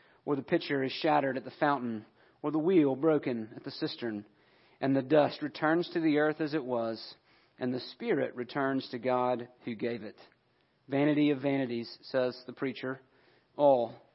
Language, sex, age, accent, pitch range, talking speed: English, male, 40-59, American, 125-155 Hz, 175 wpm